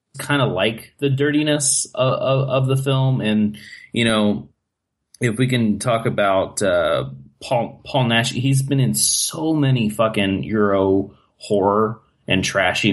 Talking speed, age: 150 wpm, 30-49